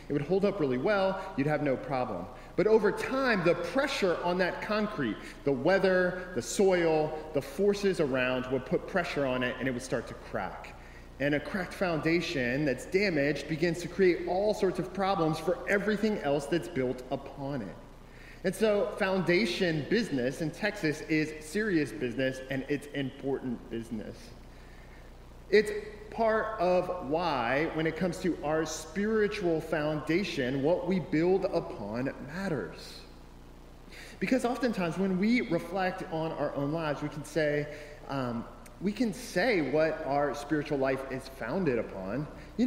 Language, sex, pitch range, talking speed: English, male, 135-190 Hz, 155 wpm